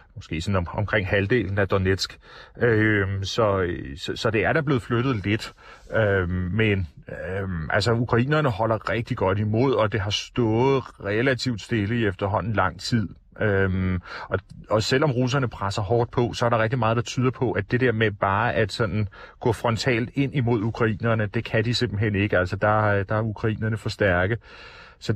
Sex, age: male, 30-49